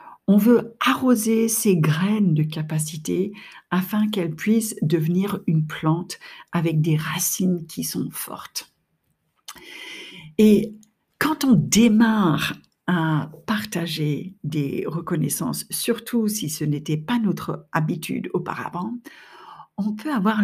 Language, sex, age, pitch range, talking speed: French, female, 60-79, 160-220 Hz, 110 wpm